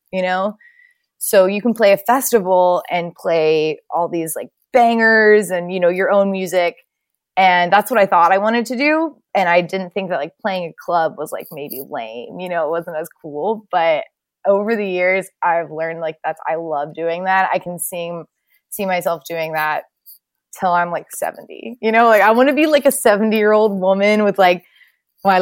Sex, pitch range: female, 175-230 Hz